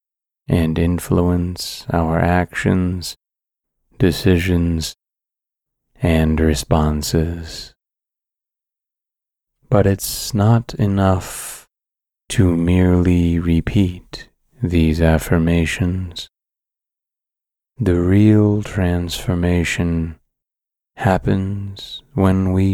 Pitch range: 85-95 Hz